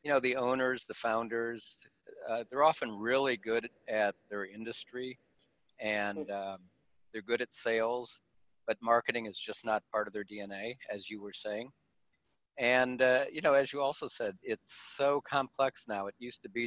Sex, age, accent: male, 50-69, American